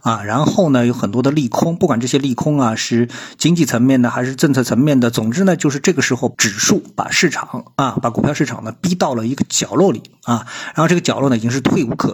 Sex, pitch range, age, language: male, 115-155 Hz, 50-69, Chinese